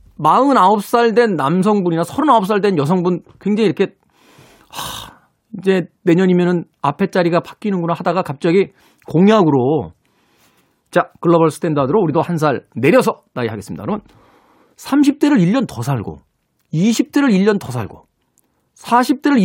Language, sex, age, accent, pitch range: Korean, male, 40-59, native, 140-195 Hz